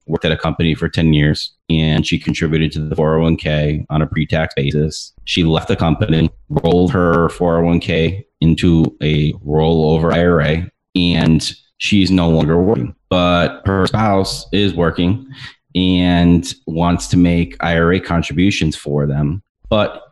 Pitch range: 75-90 Hz